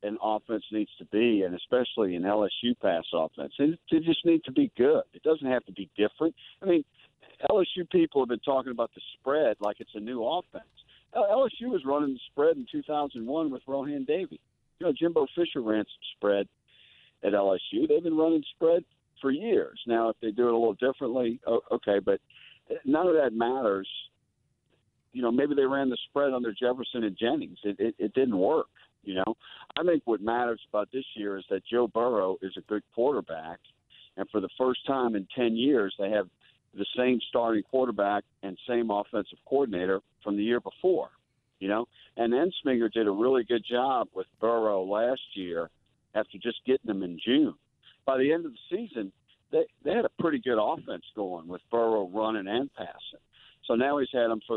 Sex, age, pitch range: male, 50-69, 105-145 Hz